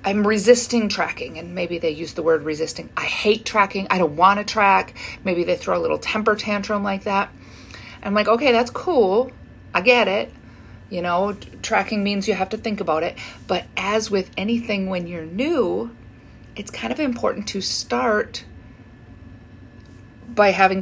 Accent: American